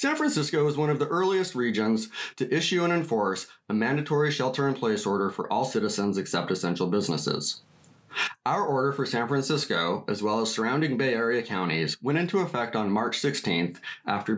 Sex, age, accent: male, 30-49, American